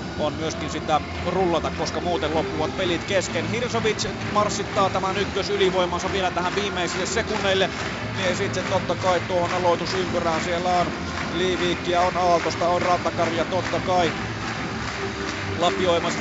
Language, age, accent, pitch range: Finnish, 30-49, native, 170-200 Hz